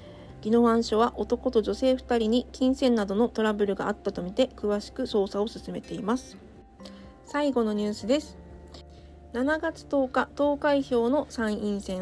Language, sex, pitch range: Japanese, female, 200-260 Hz